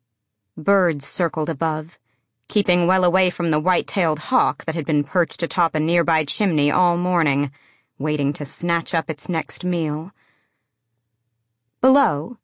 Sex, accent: female, American